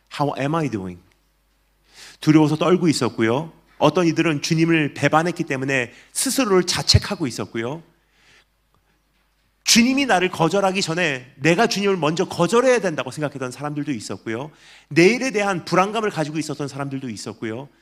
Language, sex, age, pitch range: Korean, male, 30-49, 130-185 Hz